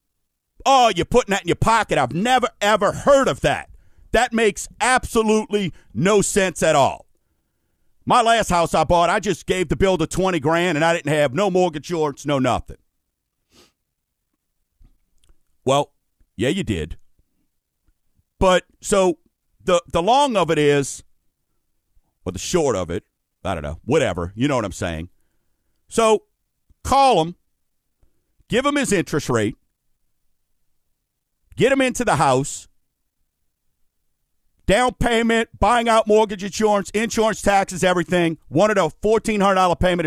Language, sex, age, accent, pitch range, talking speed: English, male, 50-69, American, 135-215 Hz, 140 wpm